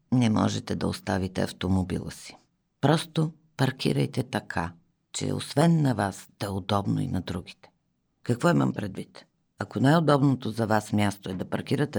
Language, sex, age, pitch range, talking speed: Bulgarian, female, 50-69, 95-140 Hz, 155 wpm